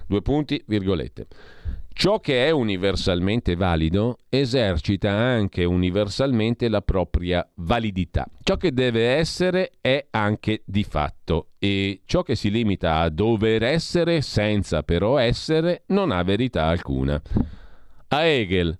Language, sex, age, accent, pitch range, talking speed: Italian, male, 40-59, native, 90-115 Hz, 125 wpm